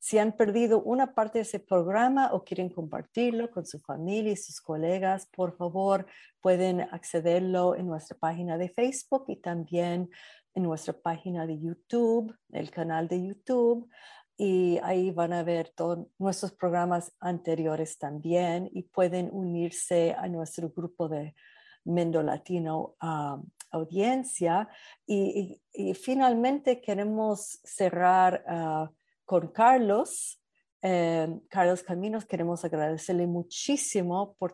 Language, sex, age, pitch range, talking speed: English, female, 50-69, 175-210 Hz, 130 wpm